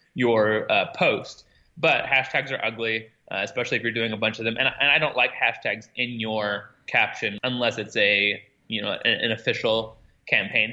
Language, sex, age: English, male, 20-39